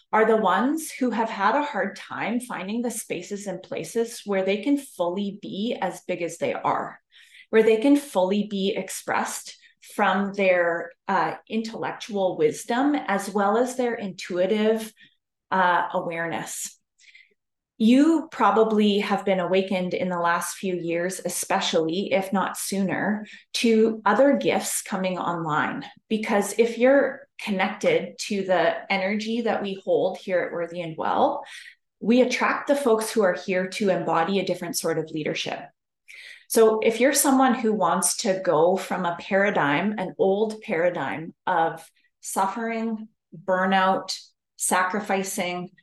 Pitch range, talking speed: 185-235 Hz, 140 wpm